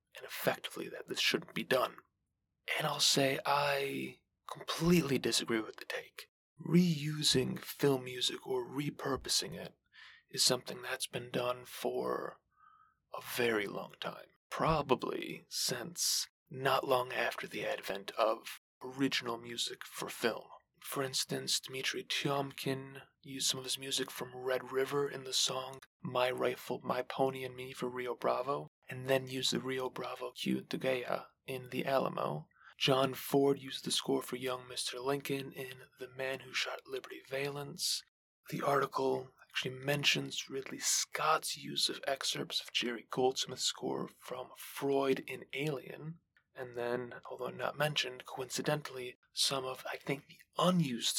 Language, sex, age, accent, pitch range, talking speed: English, male, 30-49, American, 125-140 Hz, 145 wpm